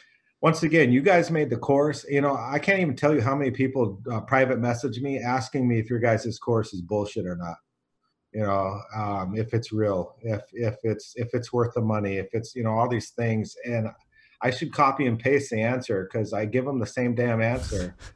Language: English